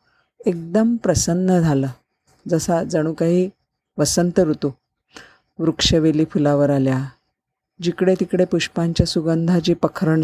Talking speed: 95 wpm